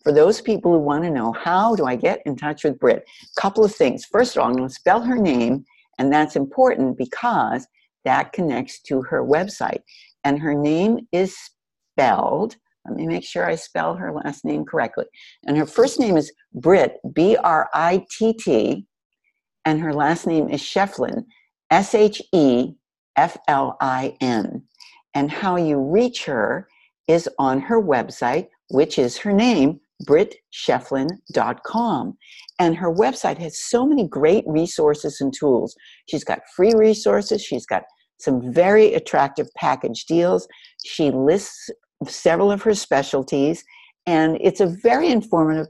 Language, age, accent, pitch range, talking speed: English, 60-79, American, 150-225 Hz, 160 wpm